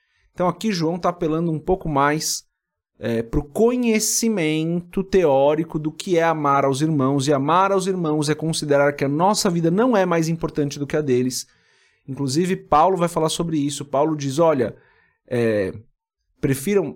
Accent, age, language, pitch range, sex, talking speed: Brazilian, 30-49, Portuguese, 130-165 Hz, male, 170 wpm